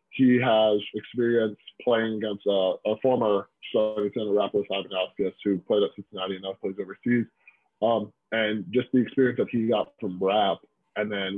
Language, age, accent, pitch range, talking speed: English, 20-39, American, 100-115 Hz, 175 wpm